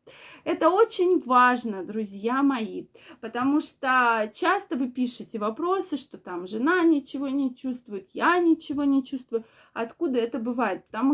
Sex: female